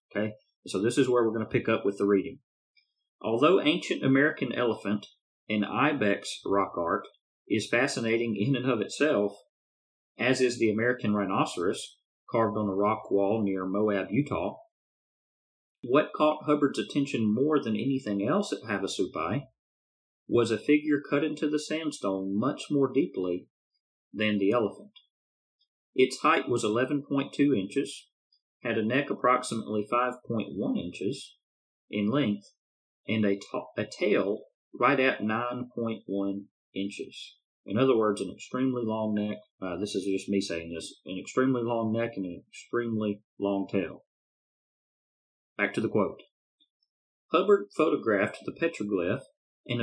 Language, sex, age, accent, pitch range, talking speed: English, male, 40-59, American, 100-135 Hz, 140 wpm